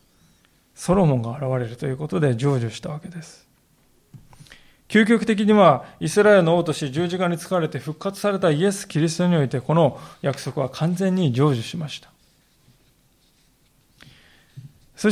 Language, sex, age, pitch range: Japanese, male, 20-39, 130-190 Hz